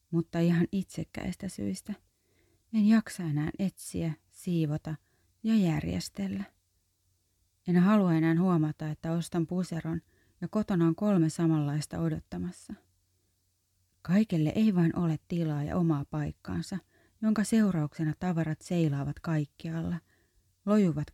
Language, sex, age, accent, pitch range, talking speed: Finnish, female, 30-49, native, 120-180 Hz, 110 wpm